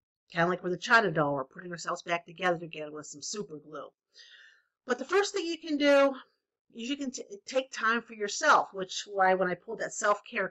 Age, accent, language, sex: 50-69, American, English, female